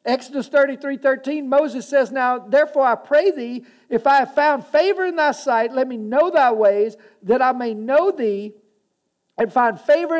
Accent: American